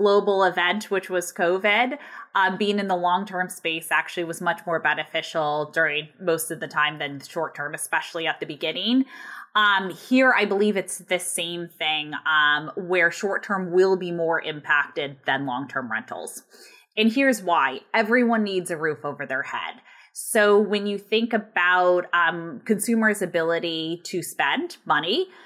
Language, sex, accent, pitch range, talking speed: English, female, American, 165-210 Hz, 160 wpm